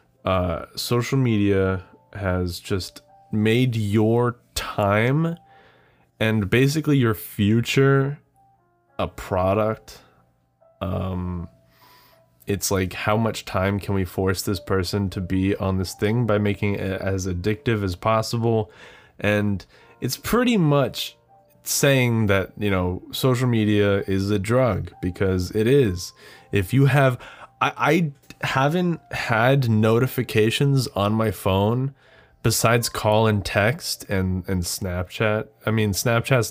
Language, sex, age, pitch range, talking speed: English, male, 20-39, 100-125 Hz, 120 wpm